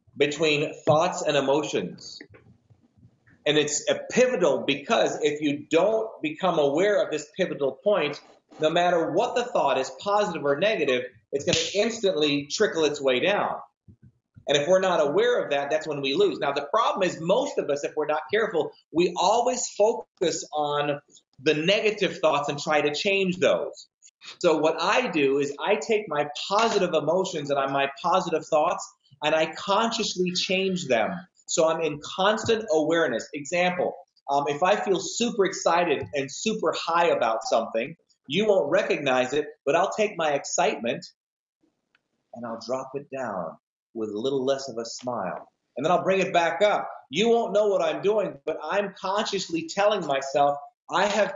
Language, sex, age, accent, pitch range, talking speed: English, male, 30-49, American, 145-205 Hz, 170 wpm